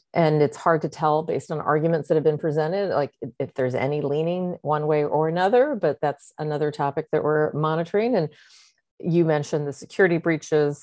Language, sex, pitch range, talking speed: English, female, 145-170 Hz, 190 wpm